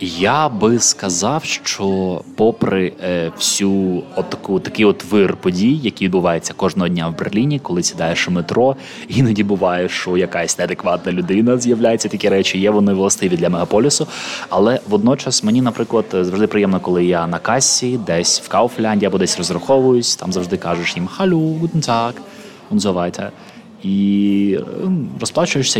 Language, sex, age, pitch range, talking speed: Ukrainian, male, 20-39, 95-125 Hz, 150 wpm